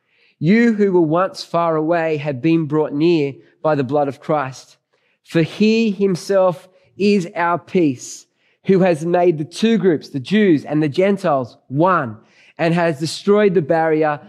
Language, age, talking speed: English, 20-39, 160 wpm